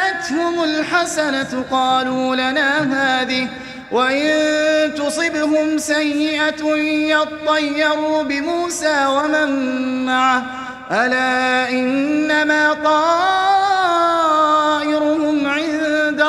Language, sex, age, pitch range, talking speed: Arabic, male, 30-49, 255-300 Hz, 55 wpm